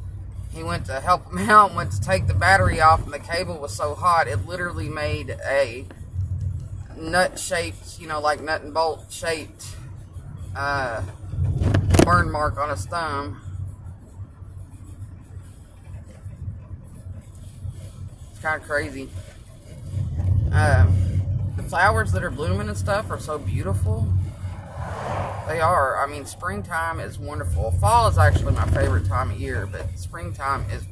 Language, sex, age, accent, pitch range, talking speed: English, female, 20-39, American, 95-105 Hz, 130 wpm